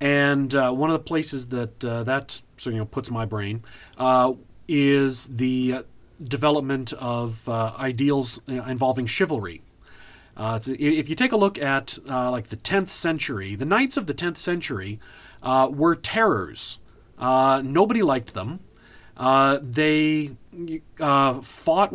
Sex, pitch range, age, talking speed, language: male, 125-155 Hz, 40-59, 150 wpm, English